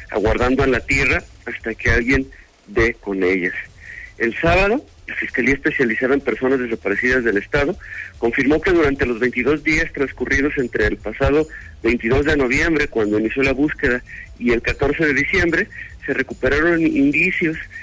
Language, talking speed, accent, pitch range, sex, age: Spanish, 150 wpm, Mexican, 125-165 Hz, male, 40-59